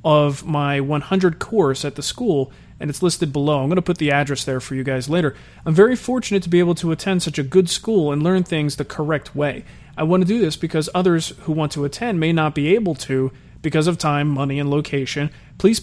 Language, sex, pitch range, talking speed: English, male, 145-180 Hz, 240 wpm